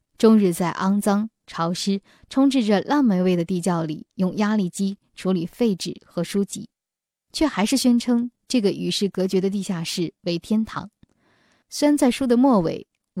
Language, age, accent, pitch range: Chinese, 10-29, native, 180-225 Hz